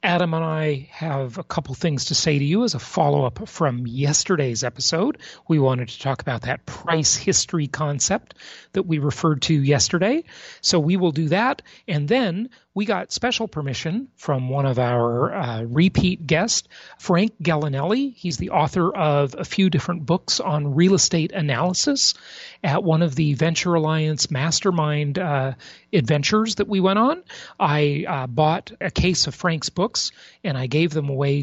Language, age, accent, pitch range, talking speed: English, 40-59, American, 140-190 Hz, 170 wpm